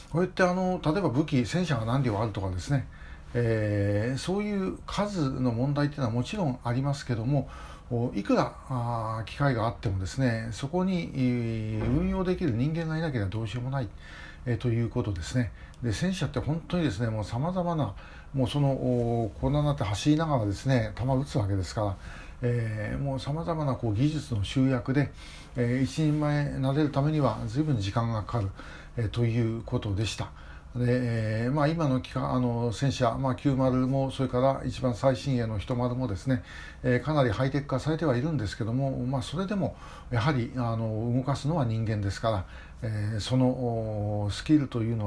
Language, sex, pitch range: Japanese, male, 110-140 Hz